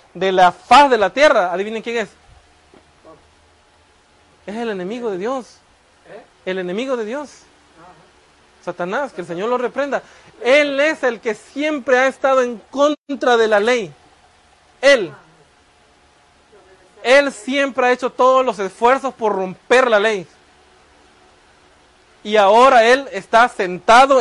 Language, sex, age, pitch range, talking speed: Spanish, male, 40-59, 195-265 Hz, 130 wpm